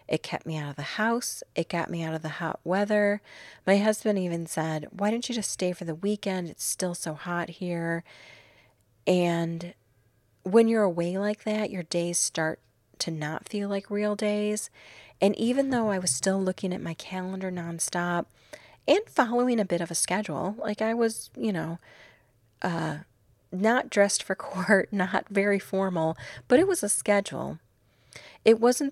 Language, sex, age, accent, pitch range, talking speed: English, female, 30-49, American, 155-205 Hz, 175 wpm